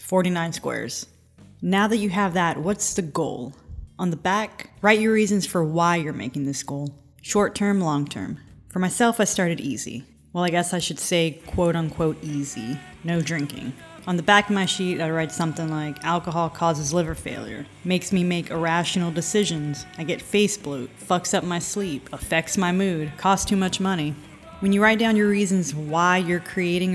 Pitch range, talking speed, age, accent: 155-190 Hz, 190 wpm, 30-49, American